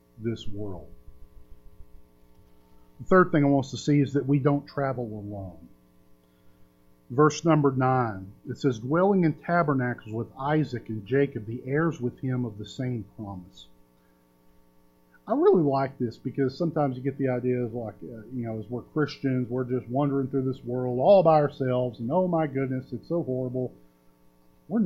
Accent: American